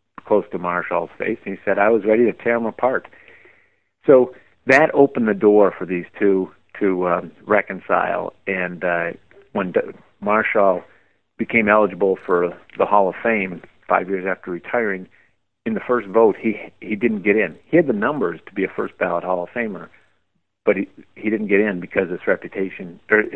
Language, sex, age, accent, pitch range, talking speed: English, male, 50-69, American, 90-105 Hz, 180 wpm